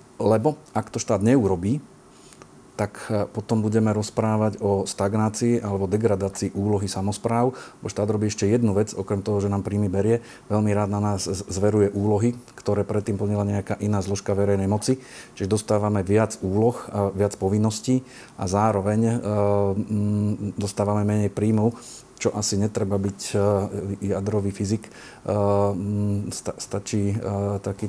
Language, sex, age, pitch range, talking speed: Slovak, male, 40-59, 100-110 Hz, 140 wpm